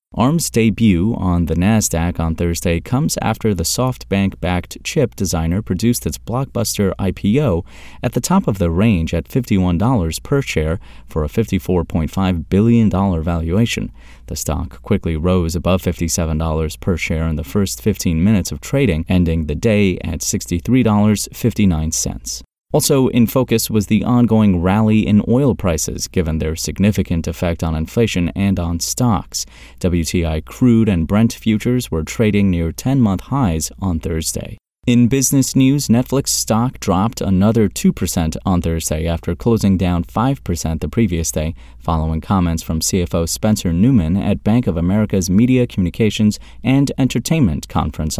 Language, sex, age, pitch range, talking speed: English, male, 30-49, 85-115 Hz, 145 wpm